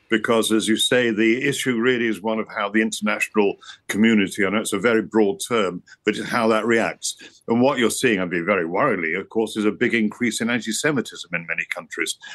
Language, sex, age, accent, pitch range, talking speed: English, male, 50-69, British, 110-130 Hz, 230 wpm